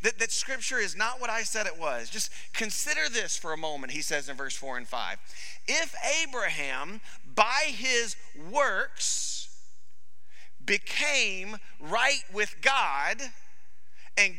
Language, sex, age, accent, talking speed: English, male, 40-59, American, 140 wpm